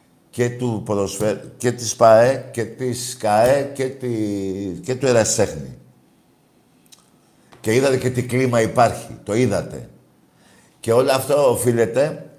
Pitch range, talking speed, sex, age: 105-135 Hz, 110 wpm, male, 60-79